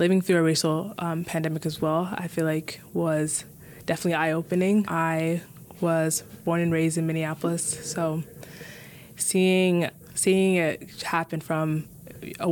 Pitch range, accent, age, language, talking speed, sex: 155-175 Hz, American, 20-39, English, 135 wpm, female